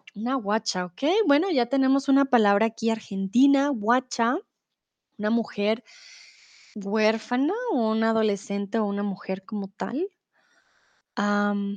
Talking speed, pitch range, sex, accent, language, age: 115 wpm, 210-275 Hz, female, Mexican, Spanish, 20-39